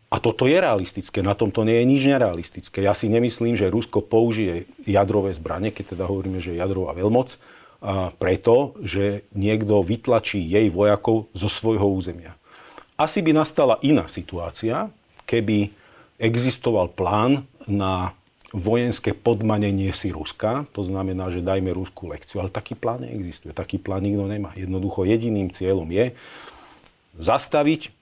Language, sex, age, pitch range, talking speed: Slovak, male, 40-59, 95-115 Hz, 145 wpm